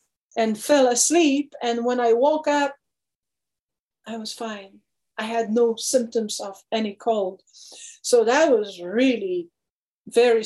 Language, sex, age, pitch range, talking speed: English, female, 40-59, 200-255 Hz, 130 wpm